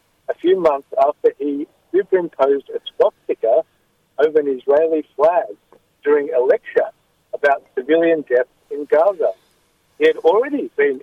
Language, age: English, 60-79